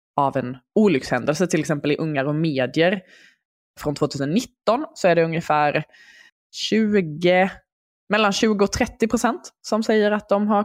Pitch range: 145-195 Hz